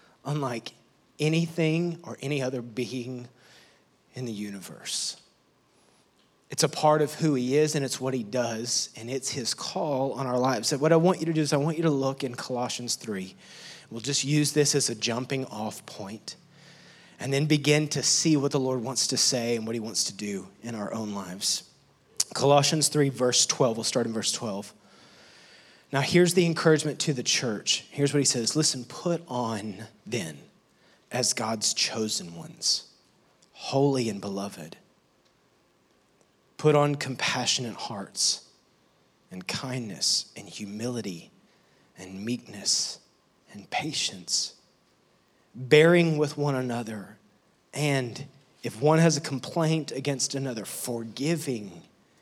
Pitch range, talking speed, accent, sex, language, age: 120-150 Hz, 150 wpm, American, male, English, 30-49